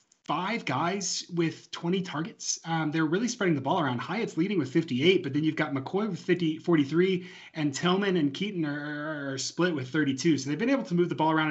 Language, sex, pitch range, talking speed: English, male, 135-170 Hz, 220 wpm